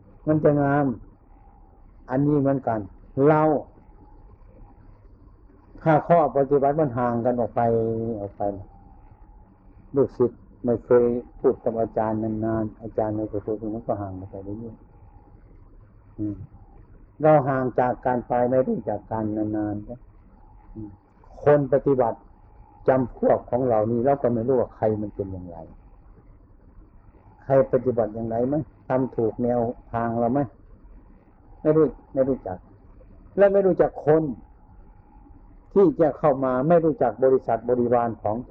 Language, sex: Thai, male